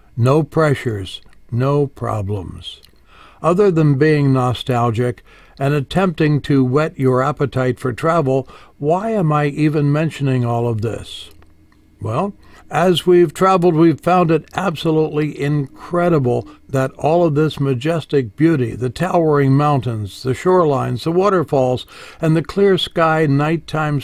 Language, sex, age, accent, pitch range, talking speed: English, male, 60-79, American, 125-160 Hz, 125 wpm